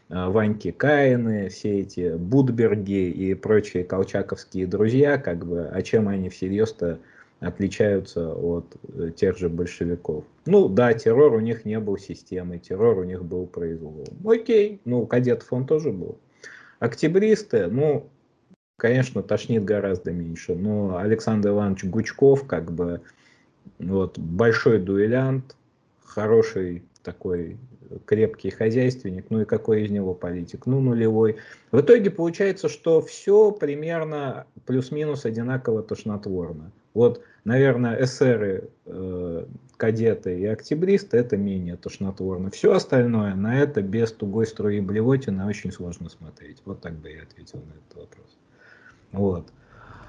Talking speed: 125 wpm